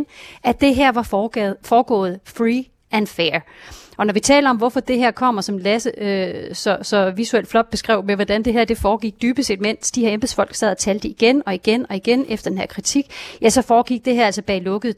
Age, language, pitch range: 30-49, Danish, 200-240 Hz